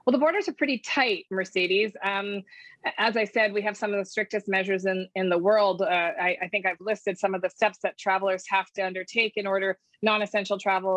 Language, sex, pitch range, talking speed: English, female, 190-220 Hz, 225 wpm